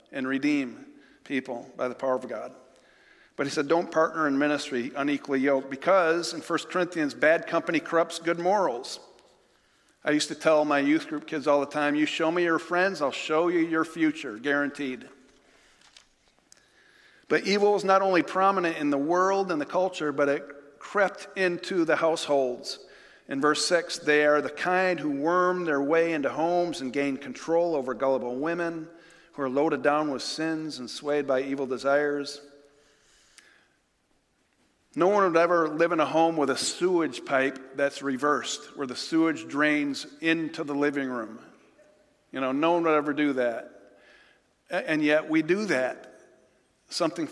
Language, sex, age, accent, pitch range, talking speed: English, male, 50-69, American, 140-170 Hz, 165 wpm